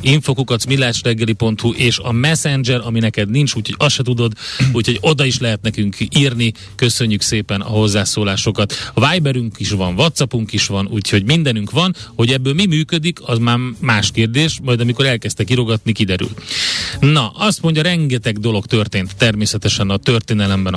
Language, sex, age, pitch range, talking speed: Hungarian, male, 30-49, 105-135 Hz, 155 wpm